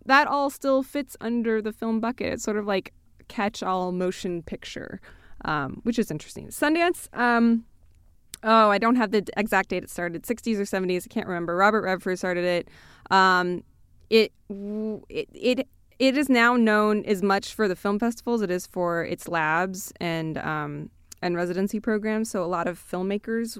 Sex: female